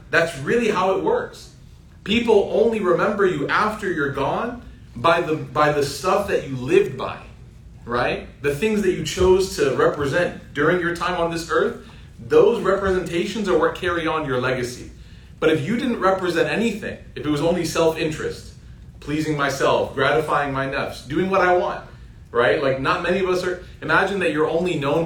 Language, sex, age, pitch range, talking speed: English, male, 30-49, 125-180 Hz, 180 wpm